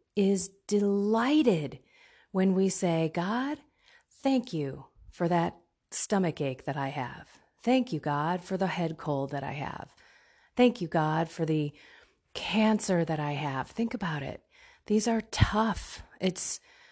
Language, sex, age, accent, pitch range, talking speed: English, female, 30-49, American, 170-225 Hz, 145 wpm